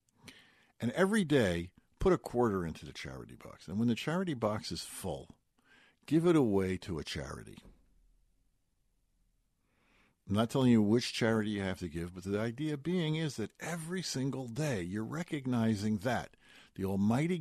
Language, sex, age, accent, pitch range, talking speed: English, male, 50-69, American, 90-130 Hz, 160 wpm